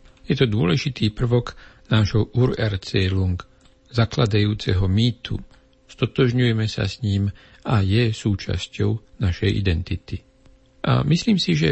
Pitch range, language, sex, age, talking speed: 100-125 Hz, Slovak, male, 60-79, 115 wpm